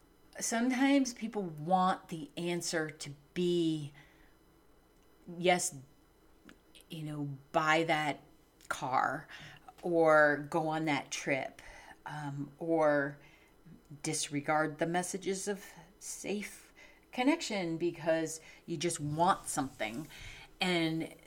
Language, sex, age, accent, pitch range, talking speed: English, female, 40-59, American, 150-175 Hz, 90 wpm